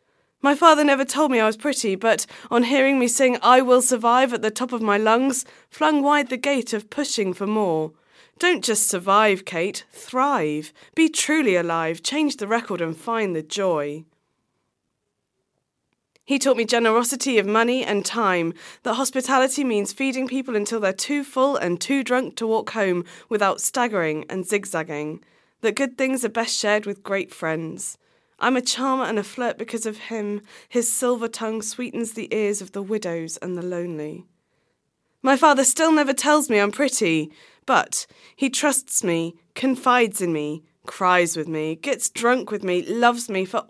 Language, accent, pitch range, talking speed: English, British, 190-260 Hz, 175 wpm